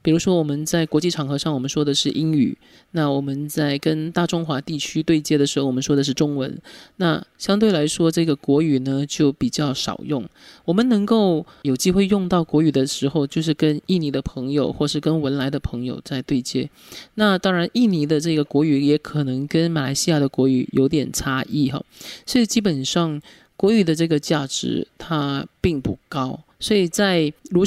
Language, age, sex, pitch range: Chinese, 20-39, male, 140-170 Hz